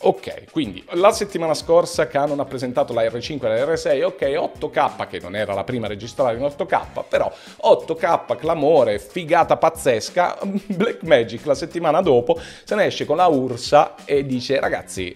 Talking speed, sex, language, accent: 165 wpm, male, Italian, native